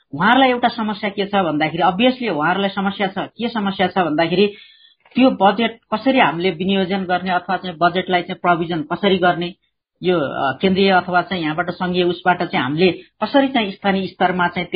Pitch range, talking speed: 175-210 Hz, 135 wpm